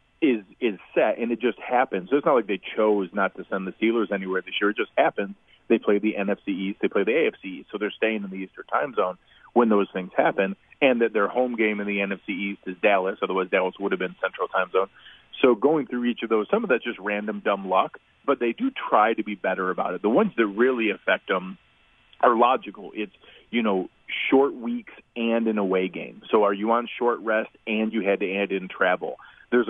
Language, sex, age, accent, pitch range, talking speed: English, male, 40-59, American, 100-120 Hz, 240 wpm